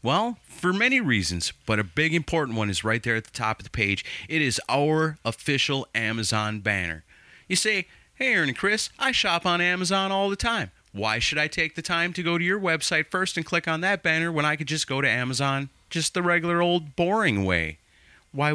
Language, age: English, 30-49